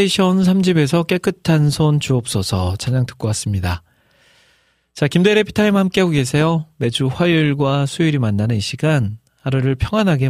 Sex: male